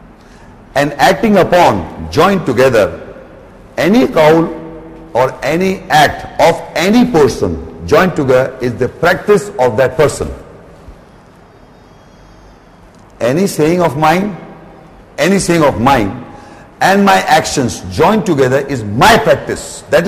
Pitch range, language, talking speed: 155-210 Hz, English, 115 wpm